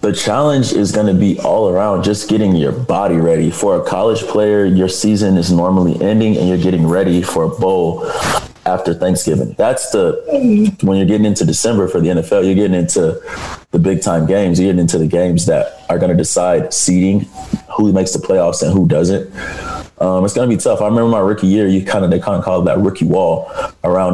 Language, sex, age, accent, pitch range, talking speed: English, male, 20-39, American, 90-105 Hz, 220 wpm